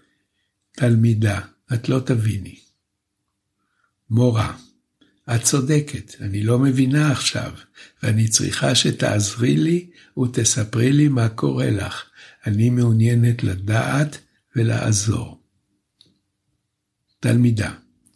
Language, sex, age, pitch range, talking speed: Hebrew, male, 60-79, 110-135 Hz, 85 wpm